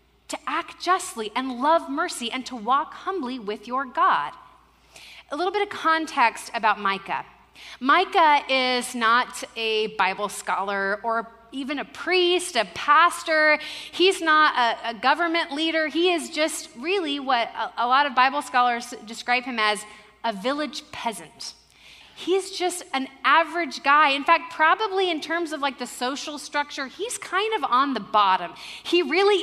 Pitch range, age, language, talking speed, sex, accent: 235-335 Hz, 30-49, English, 160 wpm, female, American